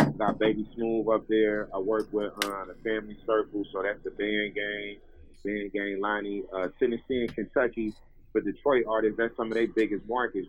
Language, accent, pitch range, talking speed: English, American, 100-110 Hz, 185 wpm